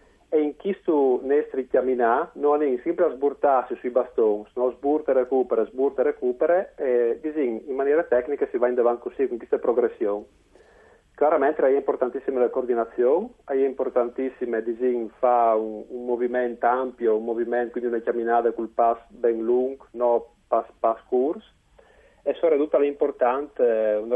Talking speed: 155 wpm